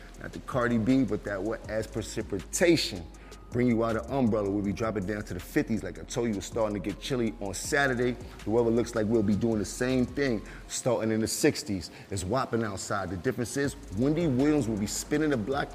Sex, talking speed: male, 220 wpm